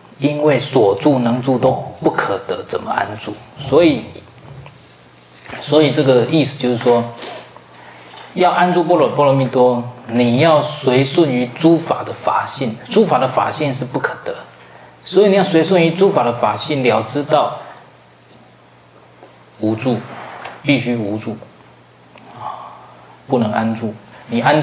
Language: Chinese